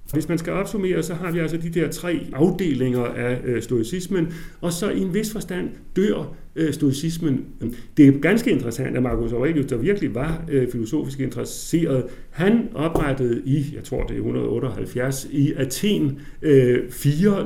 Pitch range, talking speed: 120-160 Hz, 155 wpm